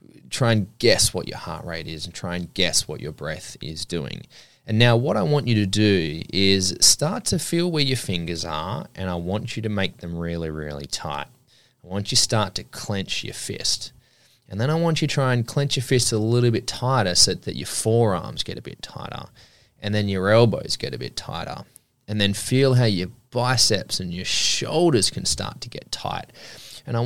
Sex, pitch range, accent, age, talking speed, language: male, 105-150 Hz, Australian, 20-39, 220 wpm, English